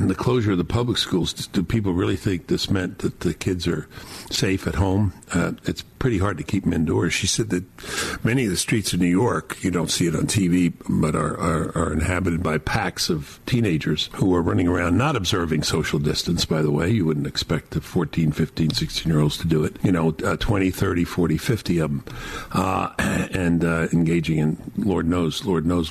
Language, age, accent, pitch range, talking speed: English, 60-79, American, 85-115 Hz, 210 wpm